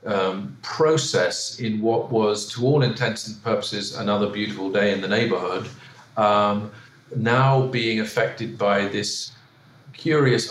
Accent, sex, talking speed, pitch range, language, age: British, male, 125 wpm, 100-125 Hz, English, 40-59